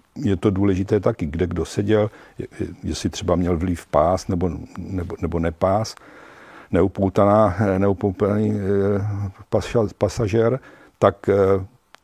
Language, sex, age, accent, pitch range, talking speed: Czech, male, 50-69, native, 95-115 Hz, 125 wpm